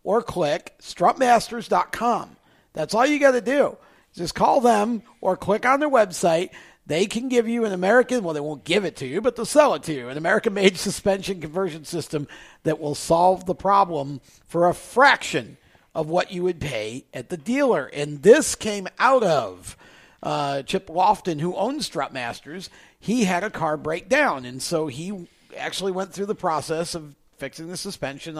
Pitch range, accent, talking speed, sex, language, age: 155-210 Hz, American, 180 wpm, male, English, 50-69